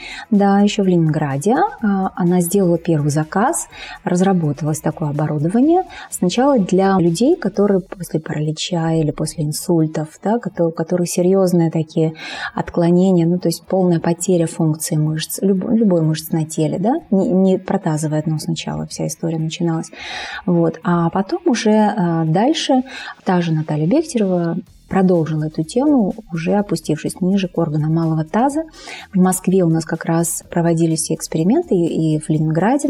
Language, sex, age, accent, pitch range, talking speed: Russian, female, 20-39, native, 160-200 Hz, 140 wpm